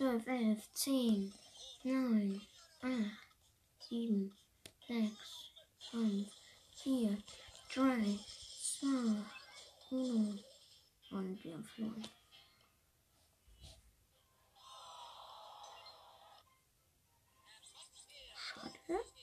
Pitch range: 200-285 Hz